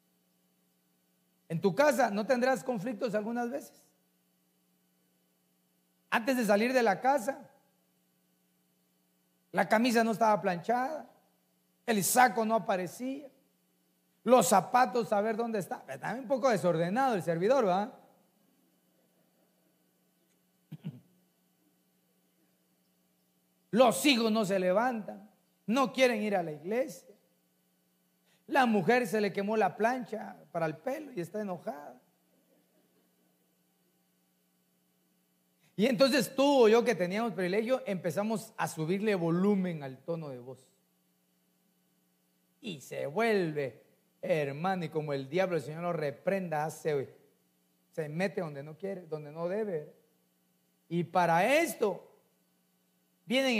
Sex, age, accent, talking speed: male, 40-59, Mexican, 115 wpm